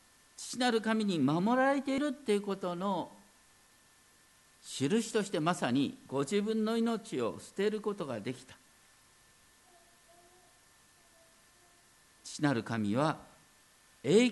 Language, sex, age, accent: Japanese, male, 50-69, native